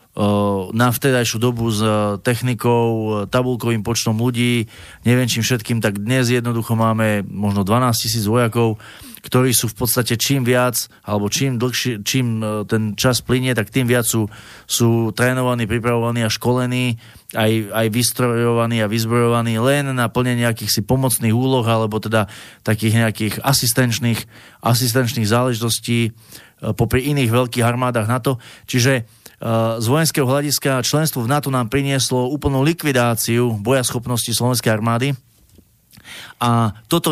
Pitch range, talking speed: 110-125 Hz, 135 wpm